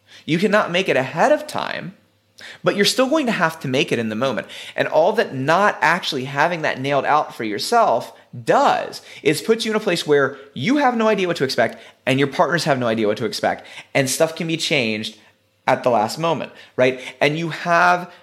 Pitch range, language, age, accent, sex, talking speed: 110-160 Hz, English, 30-49, American, male, 220 wpm